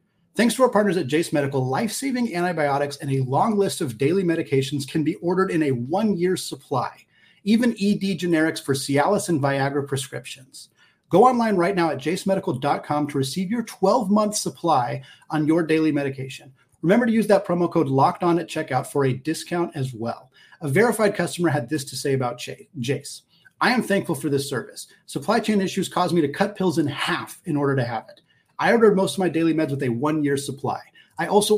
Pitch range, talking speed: 140-190 Hz, 200 wpm